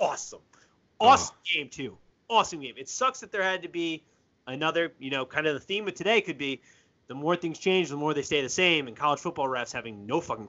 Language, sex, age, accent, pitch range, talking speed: English, male, 20-39, American, 135-185 Hz, 235 wpm